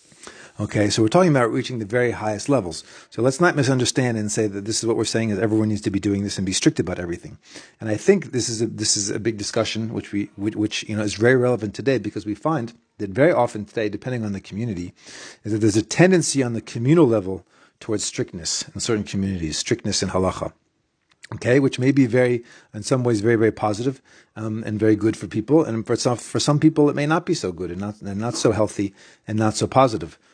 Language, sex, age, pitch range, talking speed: English, male, 40-59, 105-135 Hz, 240 wpm